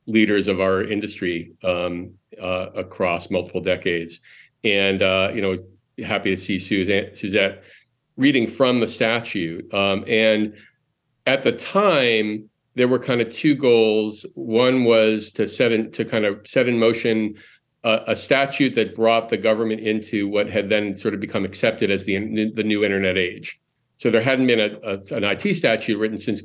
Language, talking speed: English, 170 wpm